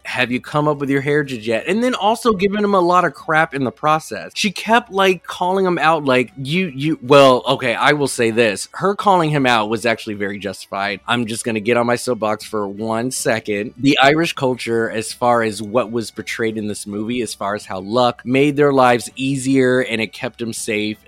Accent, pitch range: American, 105-135 Hz